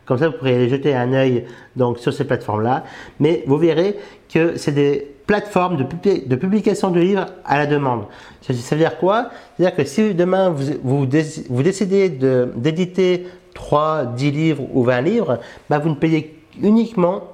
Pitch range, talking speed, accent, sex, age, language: 130-180 Hz, 165 wpm, French, male, 50-69, French